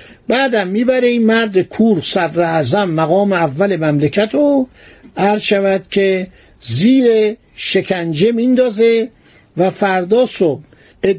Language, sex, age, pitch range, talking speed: Persian, male, 60-79, 170-220 Hz, 95 wpm